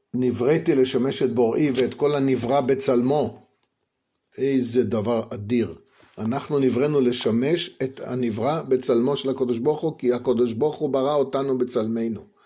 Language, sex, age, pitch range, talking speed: Hebrew, male, 50-69, 120-150 Hz, 130 wpm